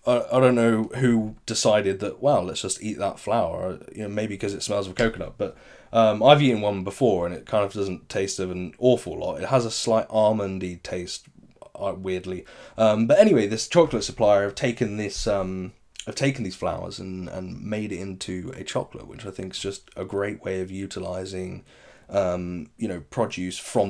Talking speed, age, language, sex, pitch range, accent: 200 wpm, 20-39, English, male, 95-125 Hz, British